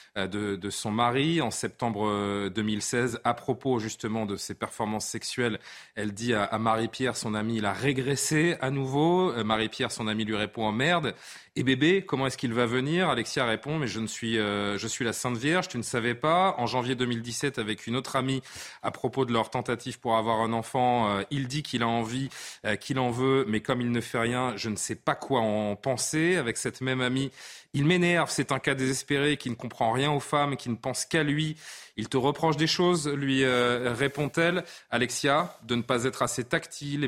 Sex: male